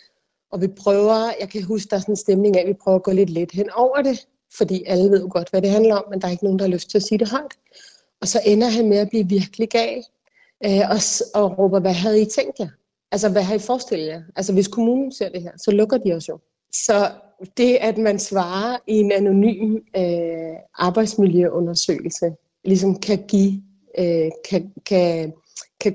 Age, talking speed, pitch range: 30-49, 215 wpm, 180-215 Hz